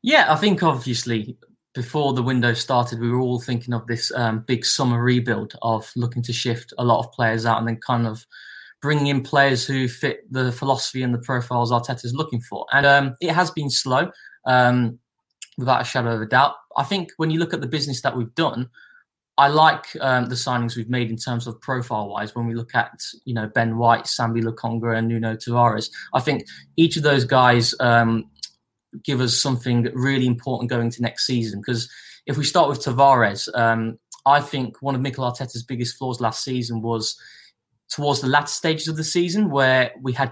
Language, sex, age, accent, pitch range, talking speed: English, male, 20-39, British, 115-135 Hz, 200 wpm